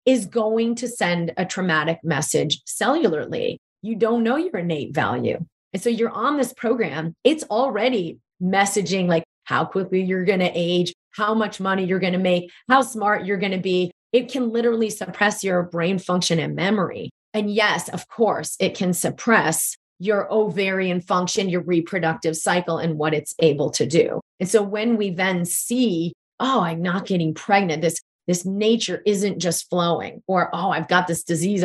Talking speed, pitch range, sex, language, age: 180 wpm, 170-215 Hz, female, English, 30-49